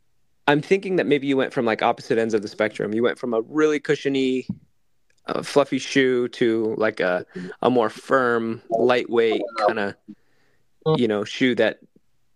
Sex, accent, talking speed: male, American, 170 wpm